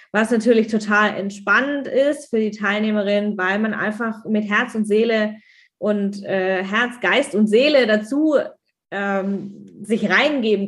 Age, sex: 20-39, female